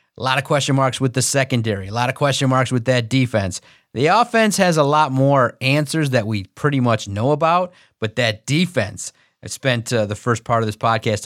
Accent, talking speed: American, 220 wpm